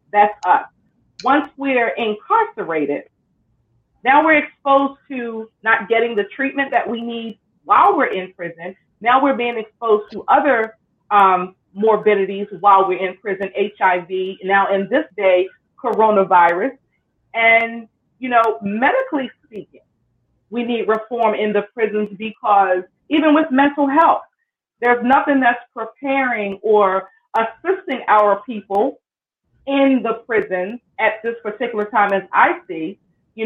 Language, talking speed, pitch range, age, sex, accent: English, 130 wpm, 210-280 Hz, 30-49, female, American